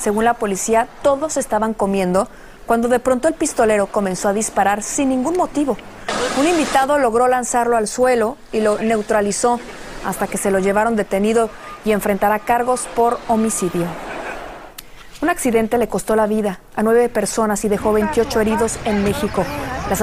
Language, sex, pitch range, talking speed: Spanish, female, 210-260 Hz, 160 wpm